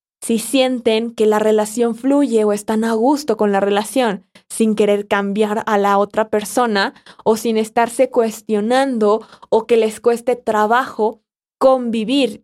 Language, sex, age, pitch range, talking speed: Spanish, female, 20-39, 205-230 Hz, 145 wpm